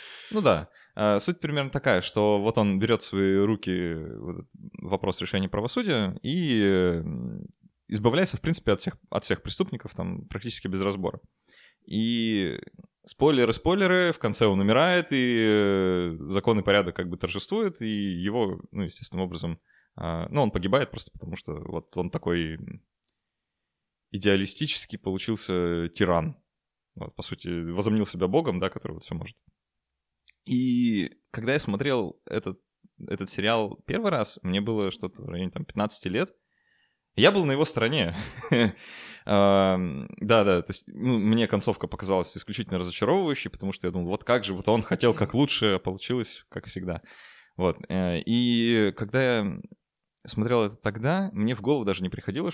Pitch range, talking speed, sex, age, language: 95-115 Hz, 140 wpm, male, 20-39, Russian